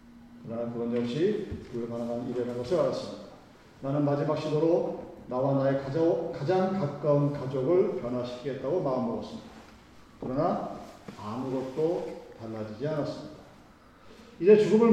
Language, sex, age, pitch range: Korean, male, 40-59, 130-175 Hz